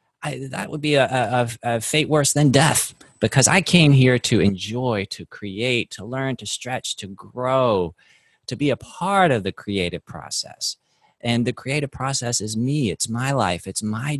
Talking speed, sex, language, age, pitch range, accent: 185 wpm, male, English, 30-49, 105-135 Hz, American